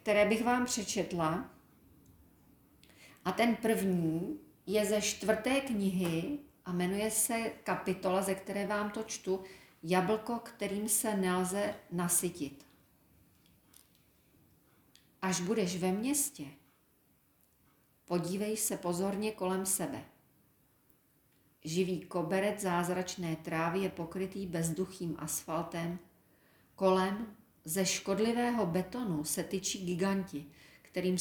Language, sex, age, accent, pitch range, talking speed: Czech, female, 40-59, native, 165-210 Hz, 95 wpm